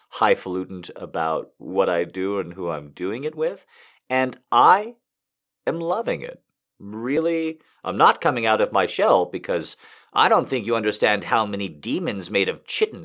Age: 50-69